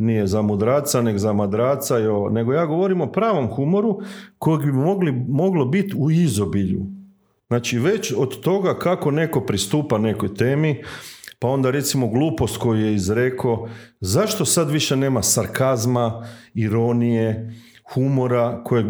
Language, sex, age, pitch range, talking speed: Croatian, male, 40-59, 115-150 Hz, 140 wpm